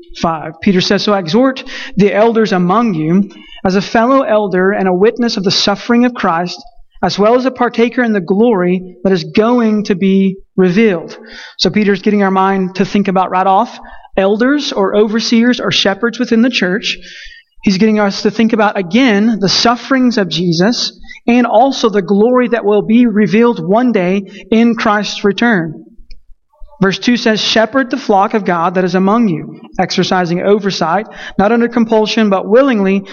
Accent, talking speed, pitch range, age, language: American, 175 wpm, 190-230 Hz, 30-49, English